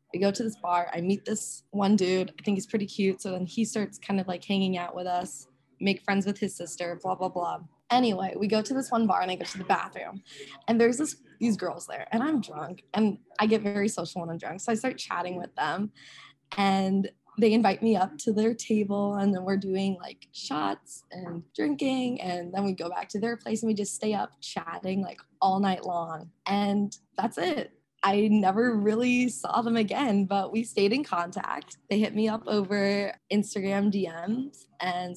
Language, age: English, 20-39